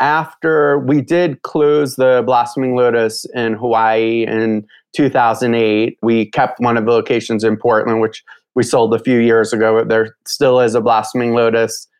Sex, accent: male, American